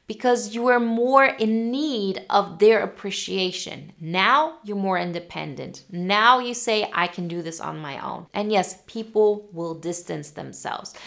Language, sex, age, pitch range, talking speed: English, female, 20-39, 175-220 Hz, 155 wpm